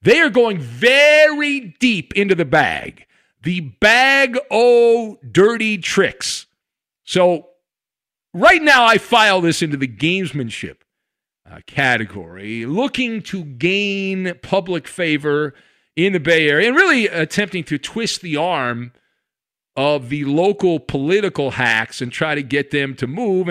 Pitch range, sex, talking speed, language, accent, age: 150-220 Hz, male, 130 wpm, English, American, 50-69